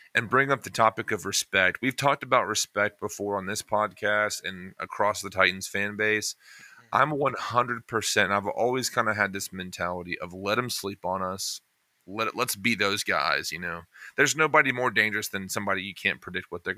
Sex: male